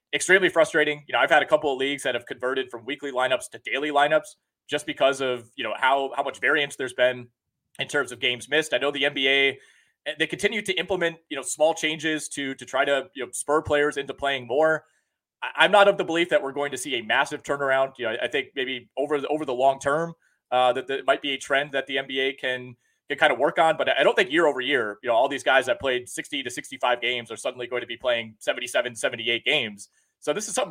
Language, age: English, 30-49